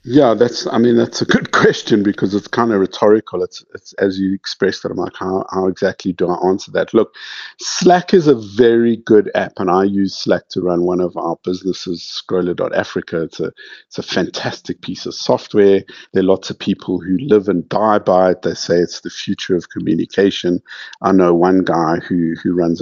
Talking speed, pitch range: 210 wpm, 90-110 Hz